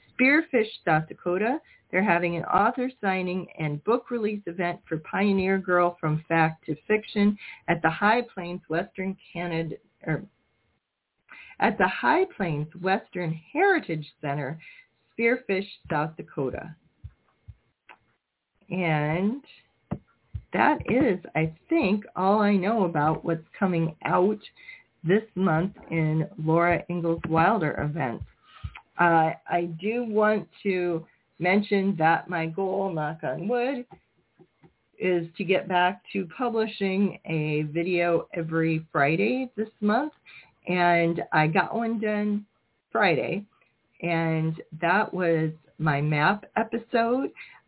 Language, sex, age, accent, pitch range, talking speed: English, female, 40-59, American, 165-210 Hz, 115 wpm